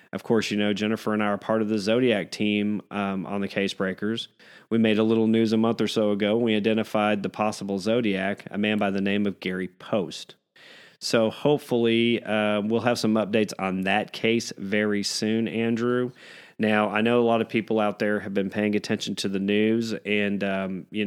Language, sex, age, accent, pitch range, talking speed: English, male, 30-49, American, 100-115 Hz, 210 wpm